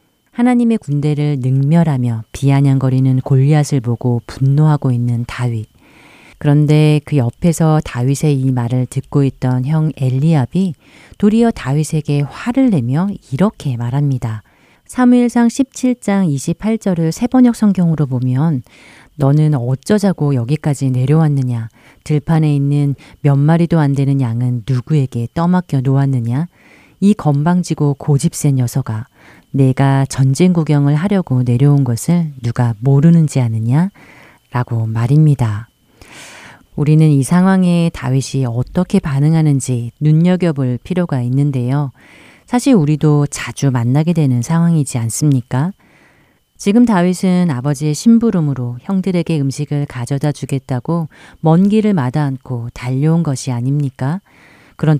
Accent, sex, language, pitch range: native, female, Korean, 130-165 Hz